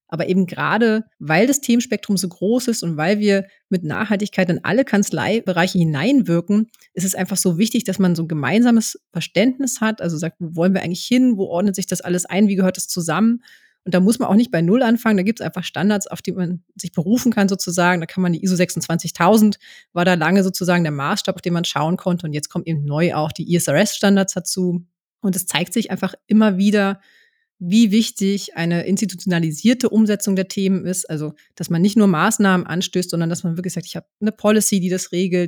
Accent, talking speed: German, 215 wpm